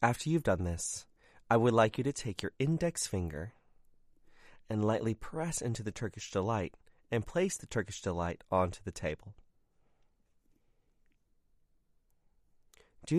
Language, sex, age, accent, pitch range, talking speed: English, male, 30-49, American, 90-120 Hz, 130 wpm